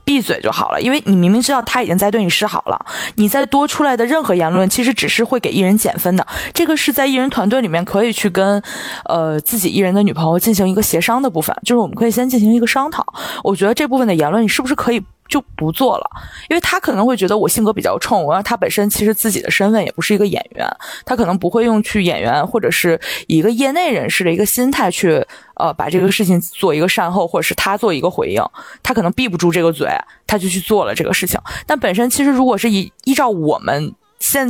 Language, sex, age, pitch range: Chinese, female, 20-39, 185-250 Hz